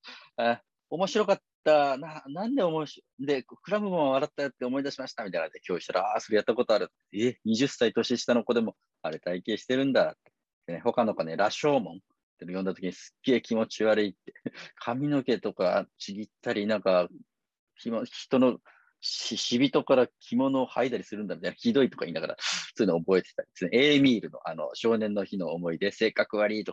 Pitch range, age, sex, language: 100-135 Hz, 40-59, male, Japanese